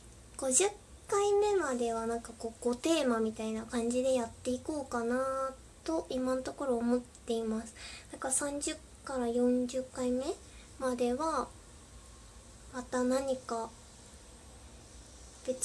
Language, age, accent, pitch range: Japanese, 20-39, native, 235-275 Hz